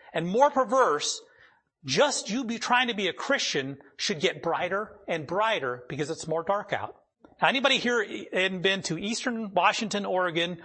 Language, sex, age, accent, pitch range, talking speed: English, male, 40-59, American, 160-230 Hz, 170 wpm